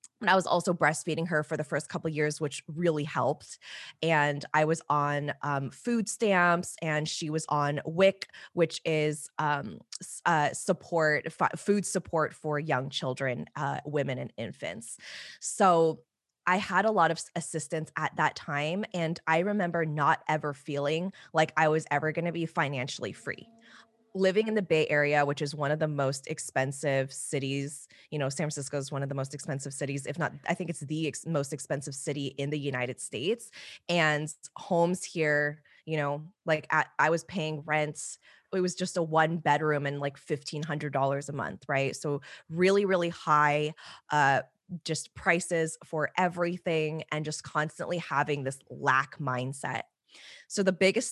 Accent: American